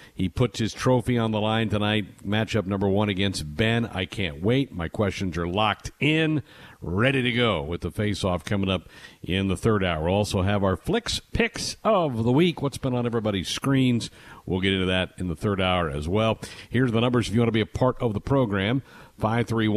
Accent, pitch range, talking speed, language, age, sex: American, 100-130 Hz, 220 wpm, English, 60-79, male